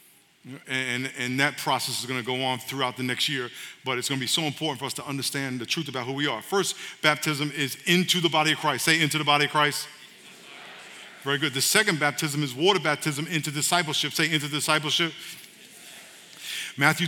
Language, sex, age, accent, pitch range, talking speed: English, male, 50-69, American, 145-170 Hz, 205 wpm